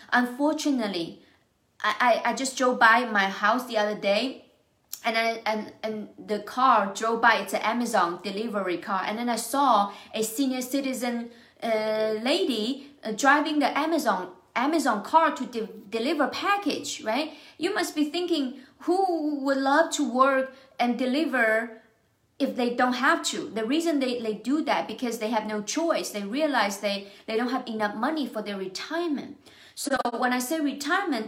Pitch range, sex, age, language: 220-290 Hz, female, 30-49, English